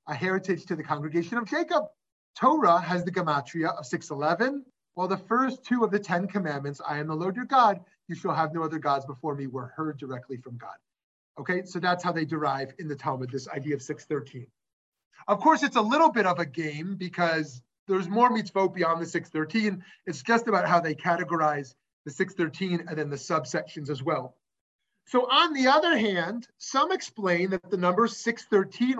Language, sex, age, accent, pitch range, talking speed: English, male, 30-49, American, 160-235 Hz, 195 wpm